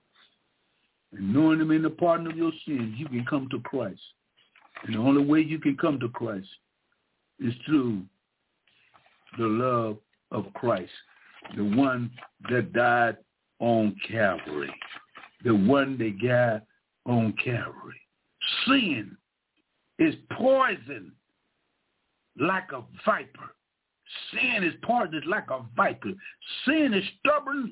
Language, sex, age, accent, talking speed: English, male, 60-79, American, 120 wpm